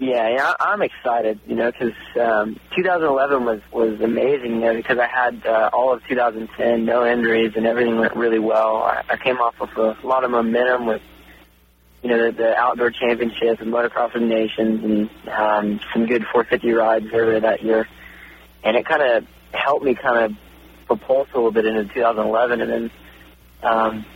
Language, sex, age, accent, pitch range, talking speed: English, male, 20-39, American, 105-120 Hz, 180 wpm